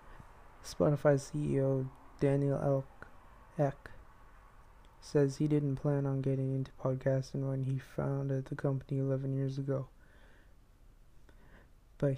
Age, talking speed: 20-39, 110 wpm